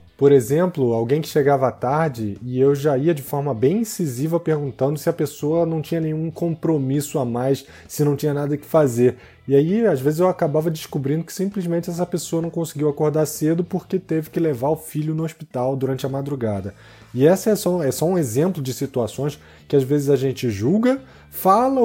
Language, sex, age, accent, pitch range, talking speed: Portuguese, male, 20-39, Brazilian, 140-175 Hz, 205 wpm